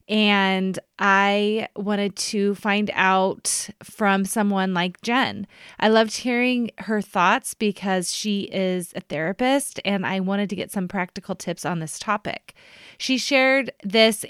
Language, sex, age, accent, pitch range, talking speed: English, female, 20-39, American, 185-225 Hz, 145 wpm